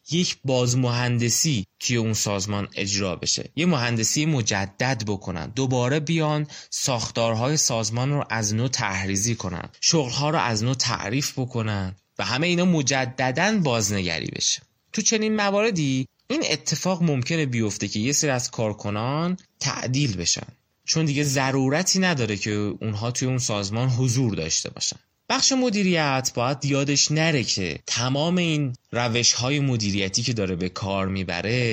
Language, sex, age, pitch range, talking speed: Persian, male, 20-39, 105-150 Hz, 140 wpm